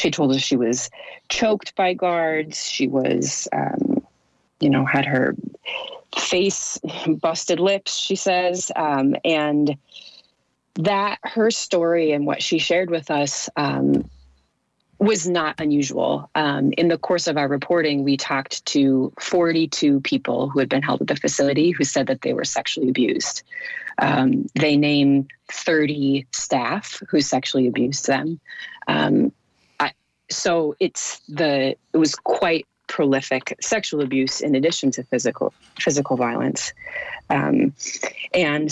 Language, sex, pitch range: English, female, 130-170 Hz